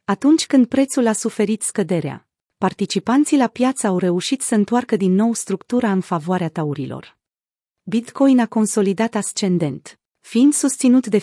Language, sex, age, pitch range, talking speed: Romanian, female, 30-49, 185-245 Hz, 140 wpm